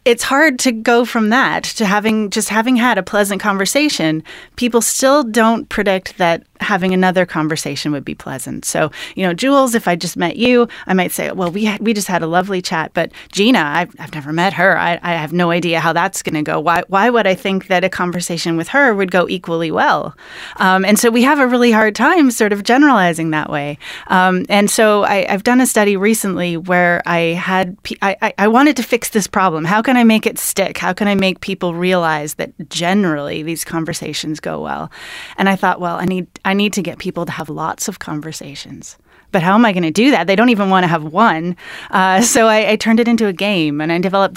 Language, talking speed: English, 235 wpm